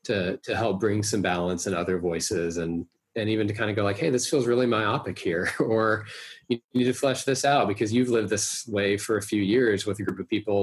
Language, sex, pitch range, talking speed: English, male, 95-115 Hz, 250 wpm